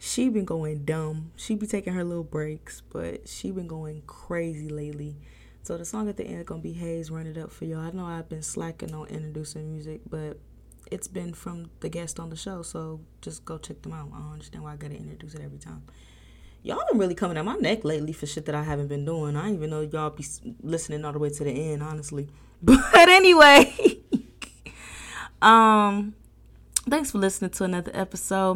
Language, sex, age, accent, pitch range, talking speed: English, female, 20-39, American, 155-220 Hz, 215 wpm